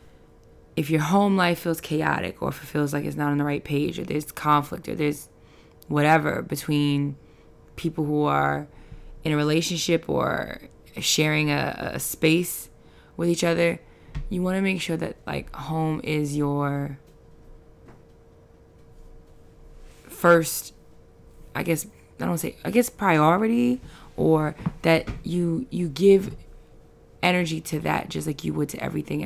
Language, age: English, 20-39